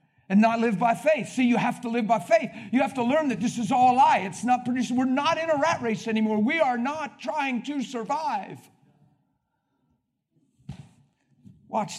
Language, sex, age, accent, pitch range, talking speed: English, male, 50-69, American, 165-230 Hz, 195 wpm